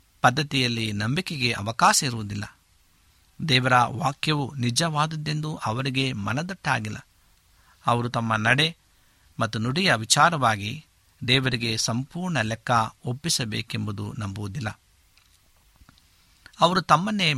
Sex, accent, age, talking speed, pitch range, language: male, native, 60-79, 75 wpm, 110-150 Hz, Kannada